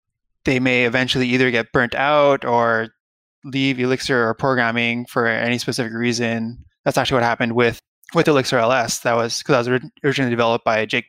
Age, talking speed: 20-39, 180 wpm